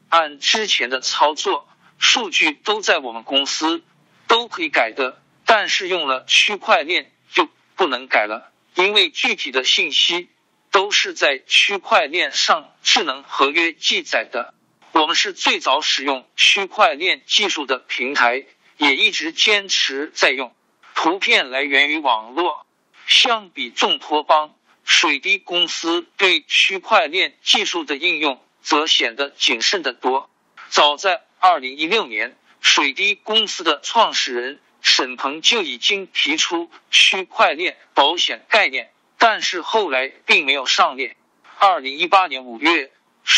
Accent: native